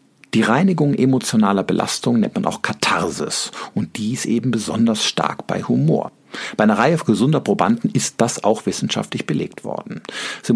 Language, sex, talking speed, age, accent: German, male, 155 wpm, 50-69, German